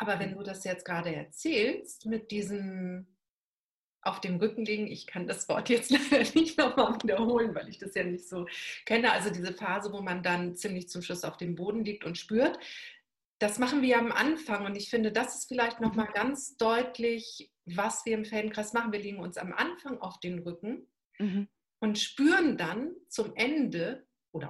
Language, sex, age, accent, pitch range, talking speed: German, female, 40-59, German, 185-245 Hz, 190 wpm